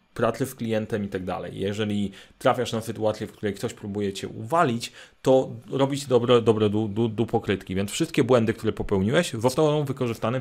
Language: Polish